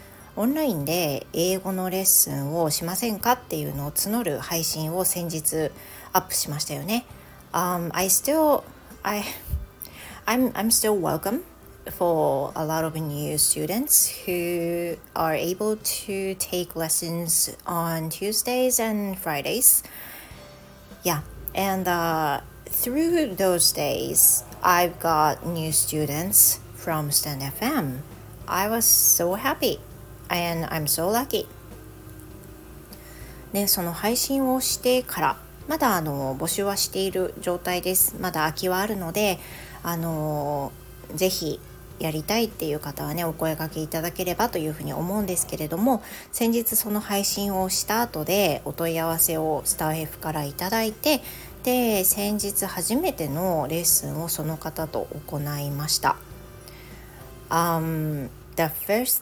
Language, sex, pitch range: Japanese, female, 155-200 Hz